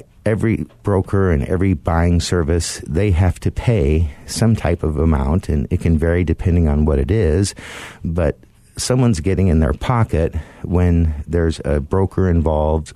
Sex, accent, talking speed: male, American, 155 wpm